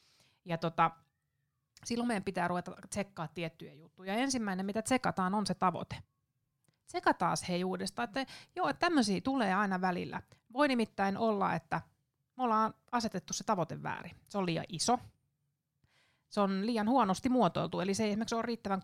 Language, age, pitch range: Finnish, 30-49, 165-220 Hz